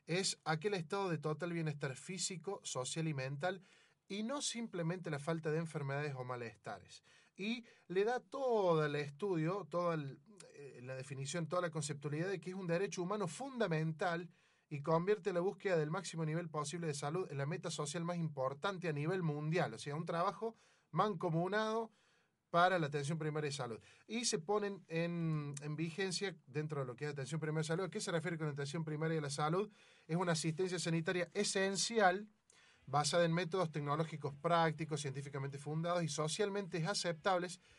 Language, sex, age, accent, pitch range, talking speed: Spanish, male, 30-49, Argentinian, 150-190 Hz, 175 wpm